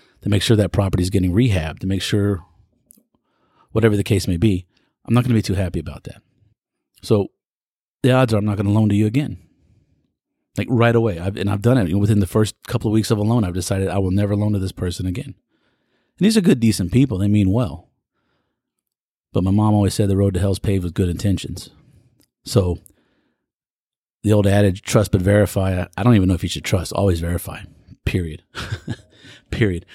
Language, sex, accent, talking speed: English, male, American, 210 wpm